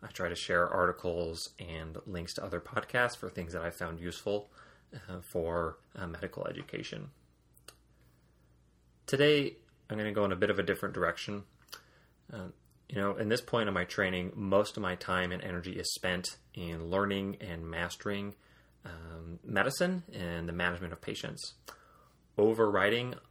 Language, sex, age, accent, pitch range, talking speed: English, male, 30-49, American, 85-110 Hz, 160 wpm